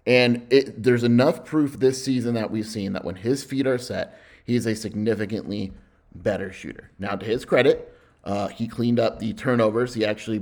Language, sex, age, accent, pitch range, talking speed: English, male, 30-49, American, 105-120 Hz, 185 wpm